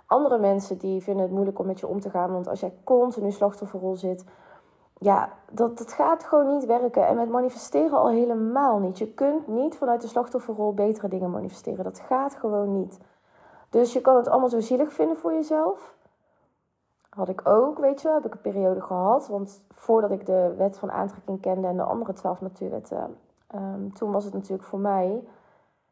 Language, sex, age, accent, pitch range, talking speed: Dutch, female, 20-39, Dutch, 190-245 Hz, 200 wpm